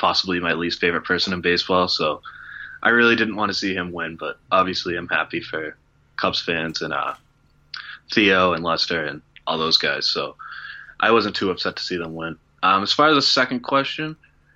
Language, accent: English, American